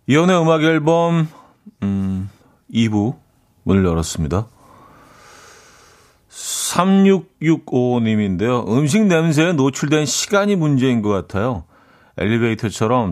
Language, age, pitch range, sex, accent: Korean, 40-59, 95-135 Hz, male, native